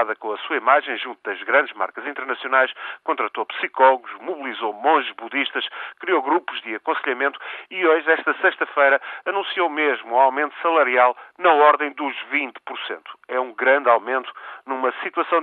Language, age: Portuguese, 40-59